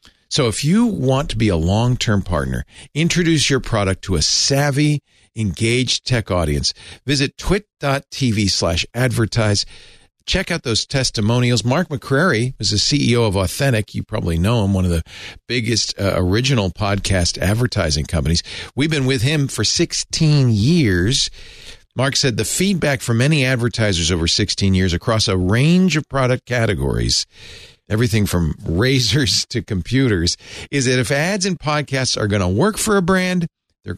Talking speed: 155 wpm